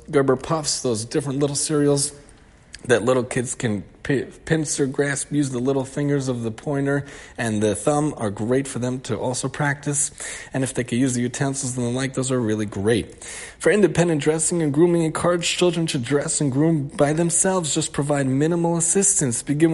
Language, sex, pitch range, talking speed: English, male, 125-155 Hz, 185 wpm